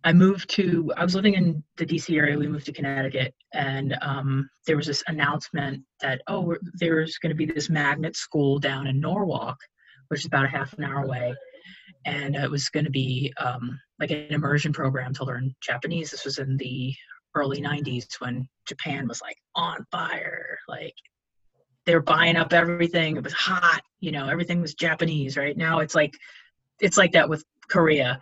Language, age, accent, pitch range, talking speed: English, 30-49, American, 140-165 Hz, 185 wpm